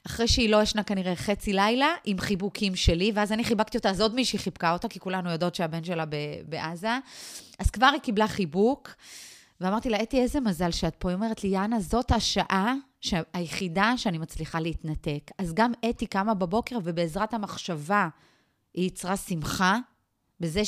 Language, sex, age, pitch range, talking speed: Hebrew, female, 30-49, 175-235 Hz, 170 wpm